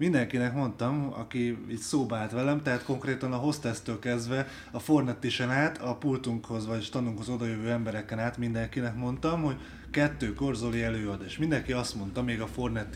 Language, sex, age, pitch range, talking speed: Hungarian, male, 30-49, 110-145 Hz, 160 wpm